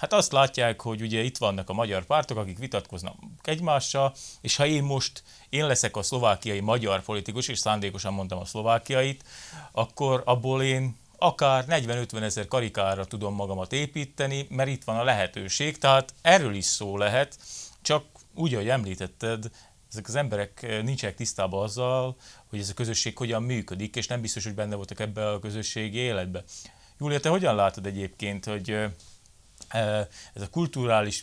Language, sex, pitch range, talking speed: Hungarian, male, 100-130 Hz, 160 wpm